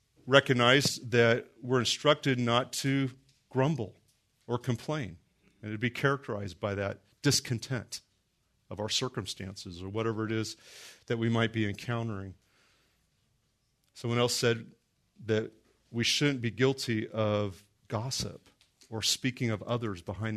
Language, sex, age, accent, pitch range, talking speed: English, male, 40-59, American, 105-130 Hz, 130 wpm